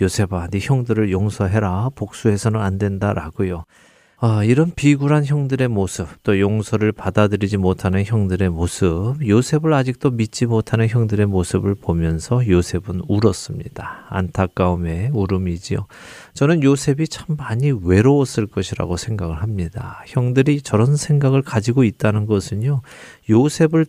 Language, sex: Korean, male